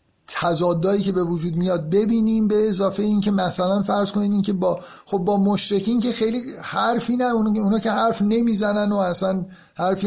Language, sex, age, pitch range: Persian, male, 50-69, 155-205 Hz